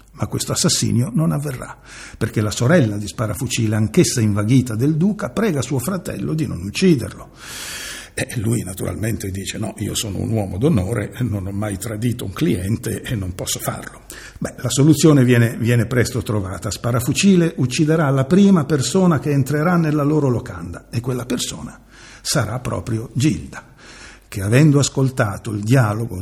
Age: 60-79